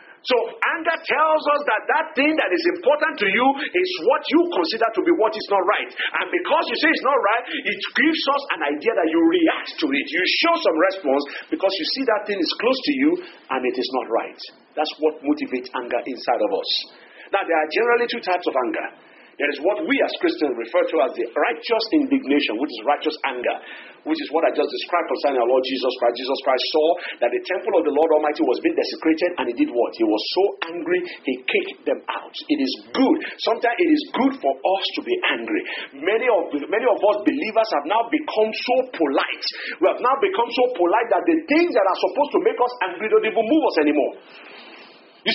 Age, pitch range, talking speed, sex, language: 50-69, 225-330 Hz, 225 wpm, male, English